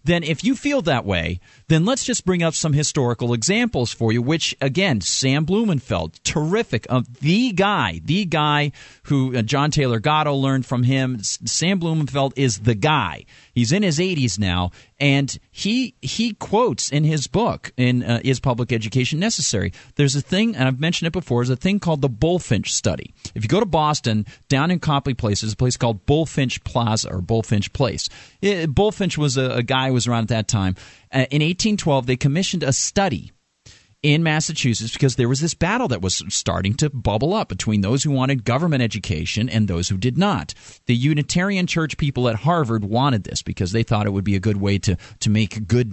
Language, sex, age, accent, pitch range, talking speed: English, male, 40-59, American, 110-160 Hz, 200 wpm